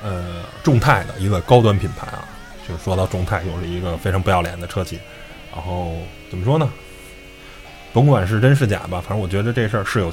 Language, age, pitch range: Chinese, 20-39, 90-120 Hz